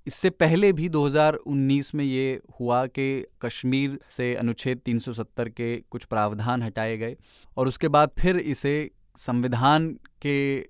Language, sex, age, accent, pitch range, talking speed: Hindi, male, 20-39, native, 110-135 Hz, 135 wpm